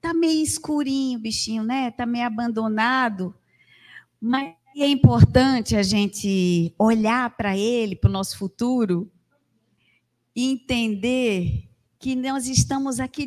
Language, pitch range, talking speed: Portuguese, 175-245 Hz, 120 wpm